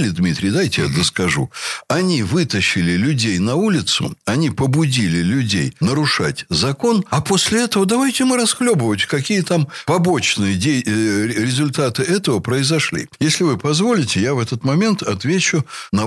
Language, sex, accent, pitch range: Russian, male, native, 105-155 Hz